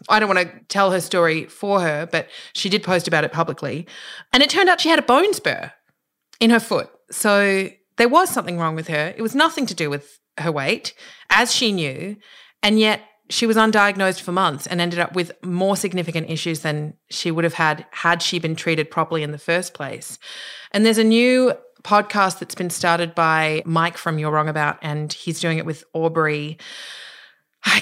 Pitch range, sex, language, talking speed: 155-195 Hz, female, English, 205 wpm